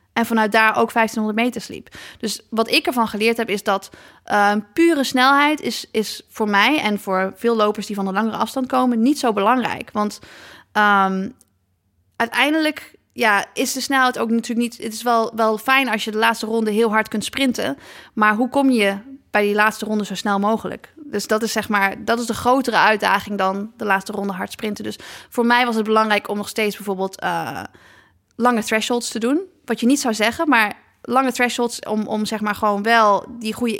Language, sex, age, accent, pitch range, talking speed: Dutch, female, 20-39, Dutch, 205-235 Hz, 210 wpm